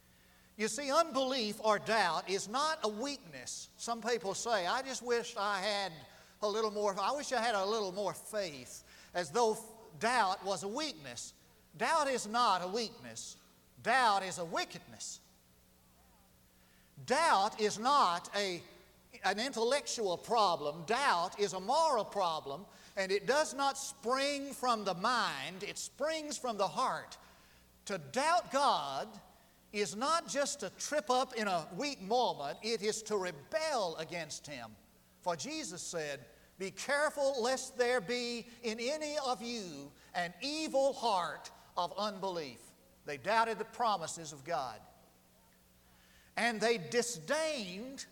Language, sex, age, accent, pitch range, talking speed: English, male, 50-69, American, 170-250 Hz, 140 wpm